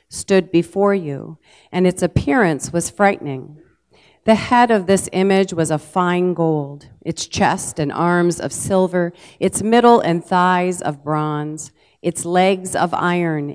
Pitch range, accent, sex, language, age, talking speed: 150-200 Hz, American, female, English, 40-59, 145 wpm